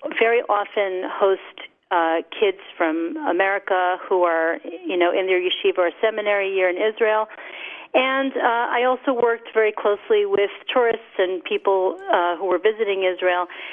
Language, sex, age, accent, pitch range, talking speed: English, female, 40-59, American, 185-255 Hz, 155 wpm